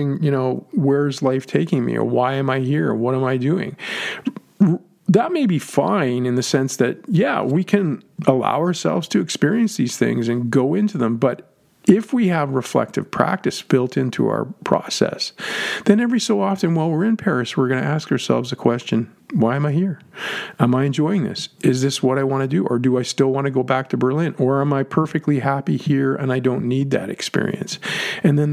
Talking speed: 210 wpm